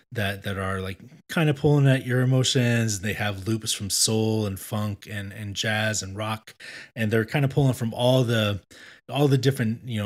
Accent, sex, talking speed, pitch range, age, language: American, male, 210 wpm, 100-130 Hz, 20-39, English